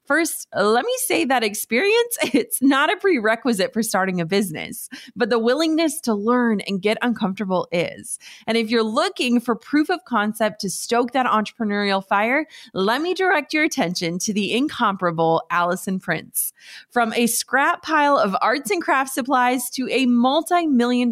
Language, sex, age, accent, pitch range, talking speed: English, female, 30-49, American, 205-270 Hz, 165 wpm